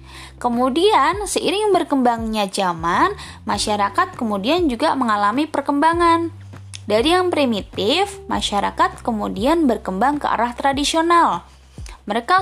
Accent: native